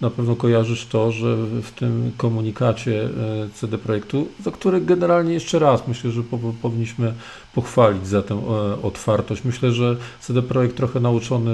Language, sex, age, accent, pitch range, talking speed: Polish, male, 40-59, native, 105-125 Hz, 150 wpm